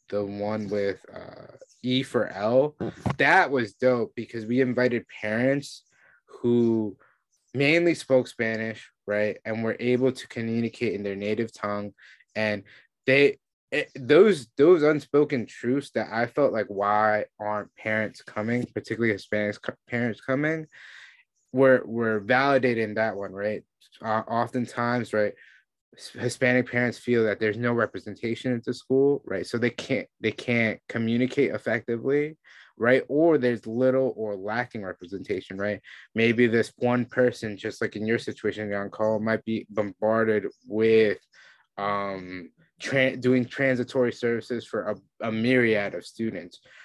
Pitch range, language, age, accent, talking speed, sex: 105-125 Hz, English, 20-39, American, 140 wpm, male